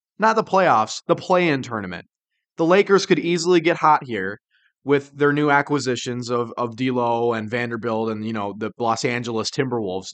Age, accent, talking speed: 20-39, American, 170 wpm